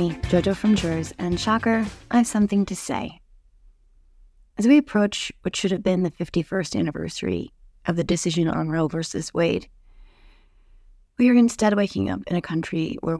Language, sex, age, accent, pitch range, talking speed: English, female, 30-49, American, 155-200 Hz, 165 wpm